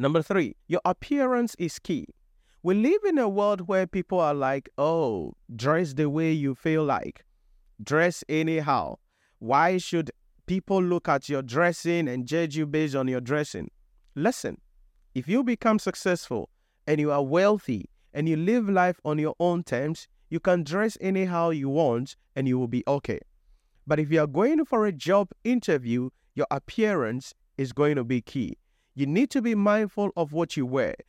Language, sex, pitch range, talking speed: English, male, 155-225 Hz, 175 wpm